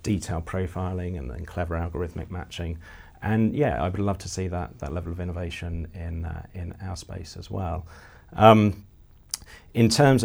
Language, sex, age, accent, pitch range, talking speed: English, male, 40-59, British, 85-100 Hz, 170 wpm